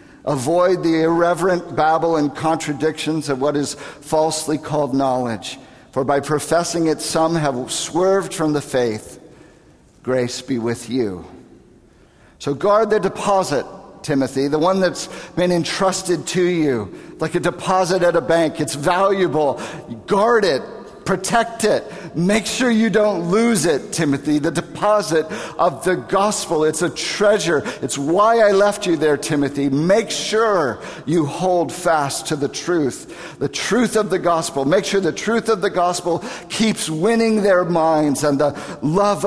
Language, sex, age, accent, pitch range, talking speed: English, male, 50-69, American, 145-190 Hz, 150 wpm